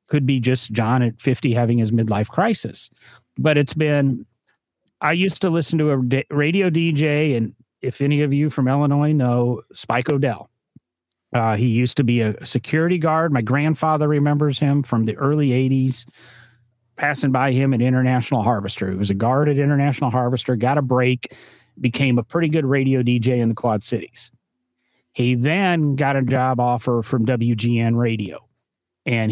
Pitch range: 120-145 Hz